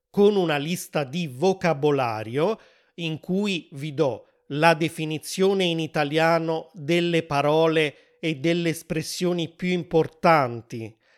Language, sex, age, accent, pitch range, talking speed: Italian, male, 30-49, native, 150-195 Hz, 105 wpm